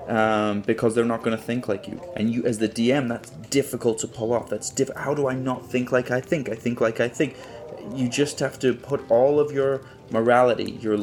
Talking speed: 240 wpm